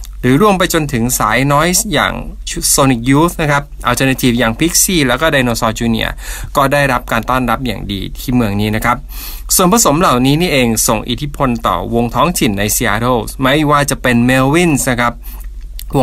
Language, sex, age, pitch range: Thai, male, 20-39, 115-145 Hz